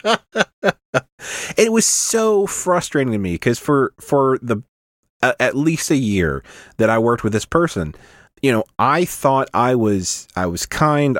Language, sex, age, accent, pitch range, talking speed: English, male, 30-49, American, 105-145 Hz, 155 wpm